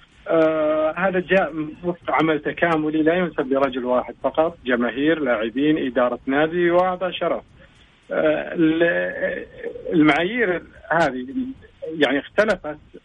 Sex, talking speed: male, 95 wpm